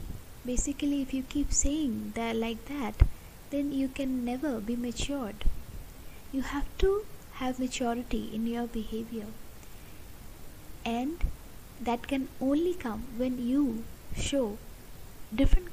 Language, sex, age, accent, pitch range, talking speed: English, female, 20-39, Indian, 210-265 Hz, 120 wpm